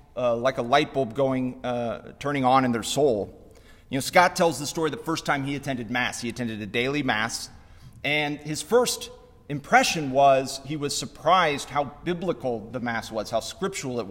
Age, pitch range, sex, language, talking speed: 30-49, 115-155 Hz, male, English, 190 wpm